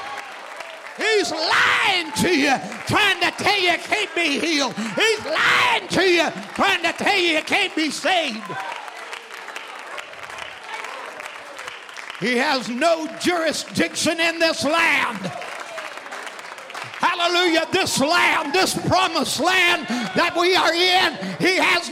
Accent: American